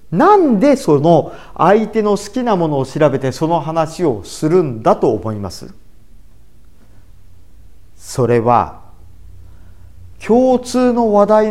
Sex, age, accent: male, 50-69, native